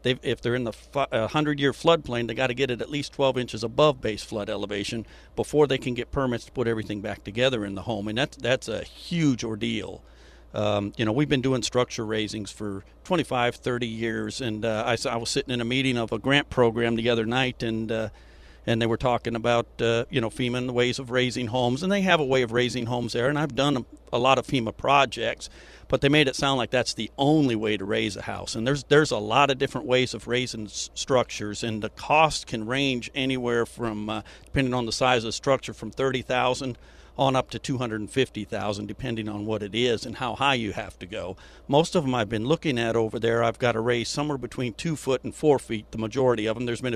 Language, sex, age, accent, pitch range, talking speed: English, male, 50-69, American, 110-130 Hz, 245 wpm